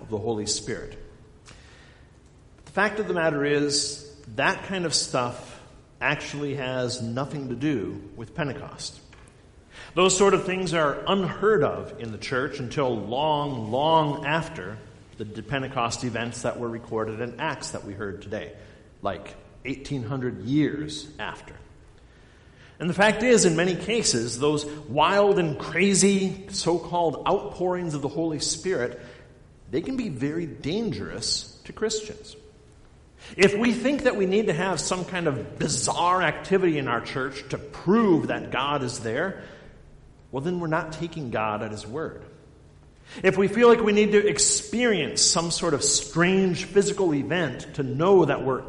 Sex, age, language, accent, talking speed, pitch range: male, 50-69, English, American, 155 wpm, 125-185 Hz